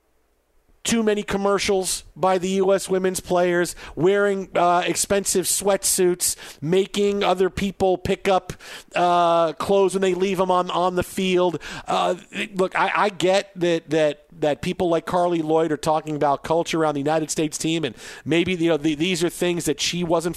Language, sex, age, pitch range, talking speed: English, male, 50-69, 160-195 Hz, 175 wpm